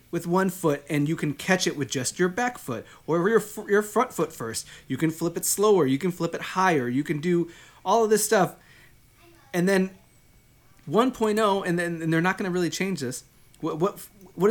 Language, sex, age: English, male, 30-49